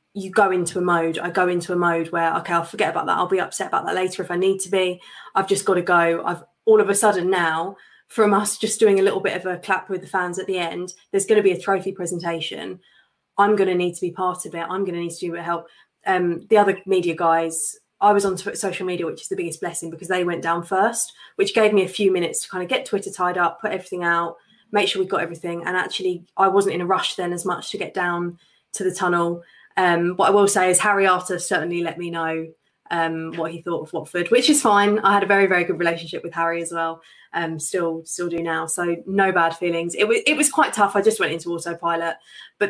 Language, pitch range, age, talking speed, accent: English, 170-195 Hz, 20-39, 270 wpm, British